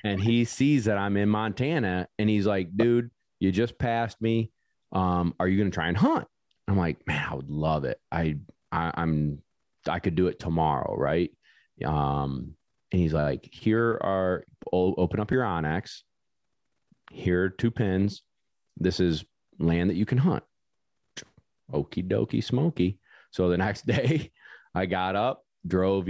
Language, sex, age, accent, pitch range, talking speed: English, male, 30-49, American, 85-105 Hz, 165 wpm